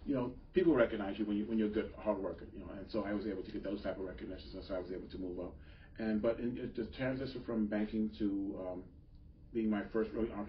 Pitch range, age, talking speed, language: 95-115 Hz, 40-59, 280 wpm, English